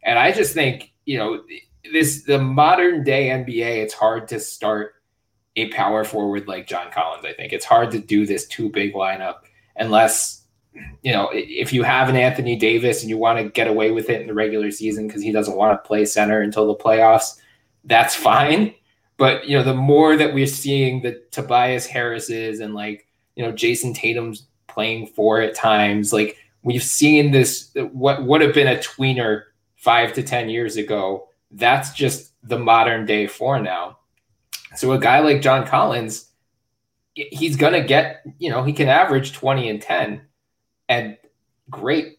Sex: male